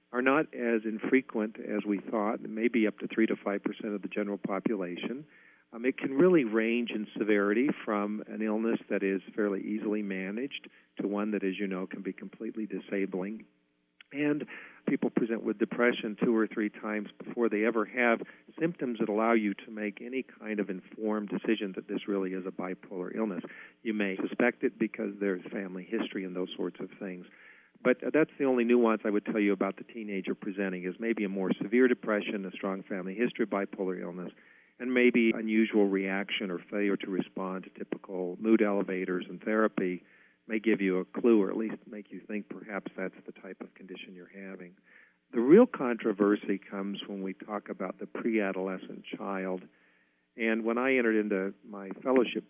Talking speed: 185 wpm